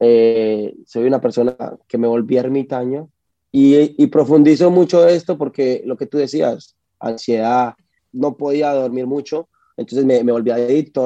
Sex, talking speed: male, 165 wpm